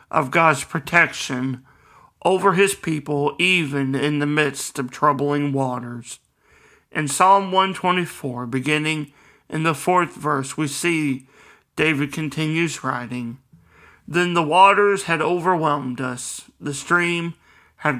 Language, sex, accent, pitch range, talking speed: English, male, American, 140-170 Hz, 115 wpm